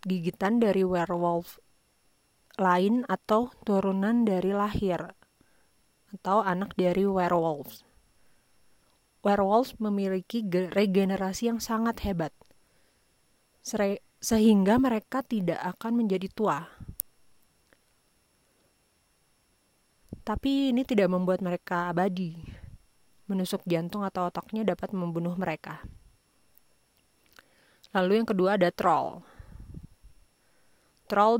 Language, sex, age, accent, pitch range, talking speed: Indonesian, female, 30-49, native, 180-205 Hz, 80 wpm